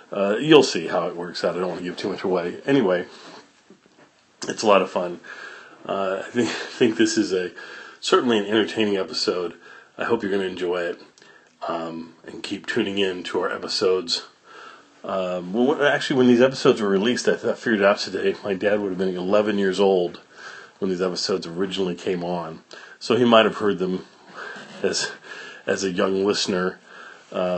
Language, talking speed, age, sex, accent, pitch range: English, 185 wpm, 40-59, male, American, 90-105 Hz